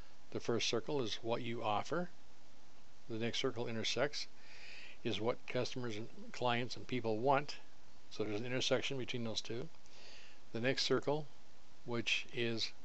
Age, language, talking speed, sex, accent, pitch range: 50-69, English, 145 wpm, male, American, 115-135 Hz